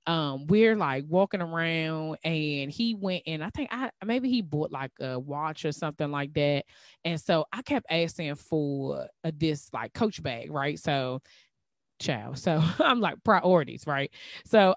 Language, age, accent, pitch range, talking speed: English, 20-39, American, 145-190 Hz, 165 wpm